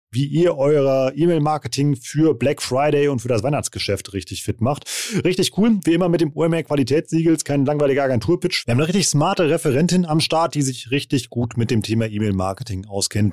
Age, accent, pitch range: 30-49, German, 110-145 Hz